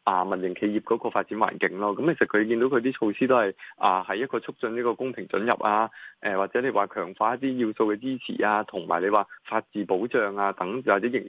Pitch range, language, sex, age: 100-125 Hz, Chinese, male, 20-39